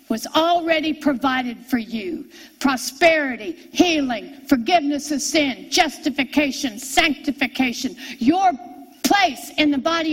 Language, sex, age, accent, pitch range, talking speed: English, female, 60-79, American, 270-310 Hz, 100 wpm